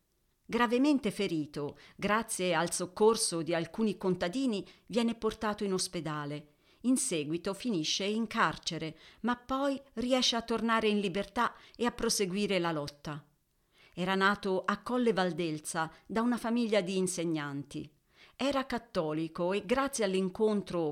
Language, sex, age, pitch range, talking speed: Italian, female, 40-59, 165-225 Hz, 125 wpm